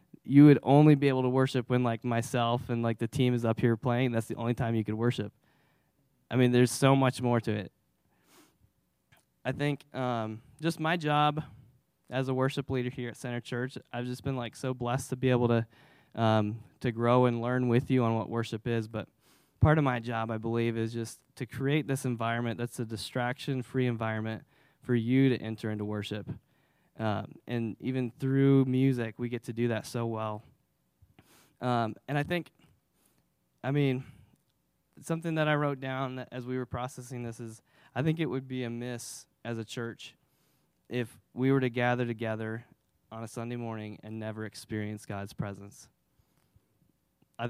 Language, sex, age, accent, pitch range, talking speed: English, male, 10-29, American, 115-130 Hz, 185 wpm